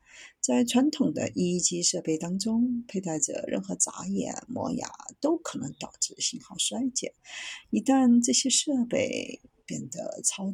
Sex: female